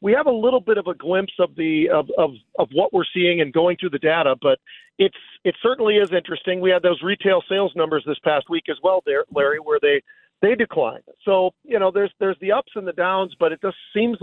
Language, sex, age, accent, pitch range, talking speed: English, male, 50-69, American, 155-200 Hz, 245 wpm